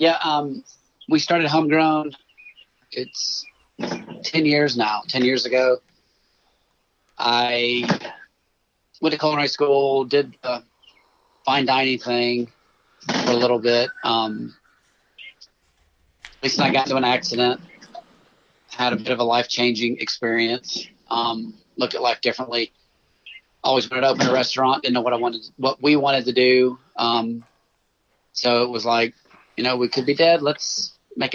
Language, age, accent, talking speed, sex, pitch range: English, 40-59, American, 140 wpm, male, 120-140 Hz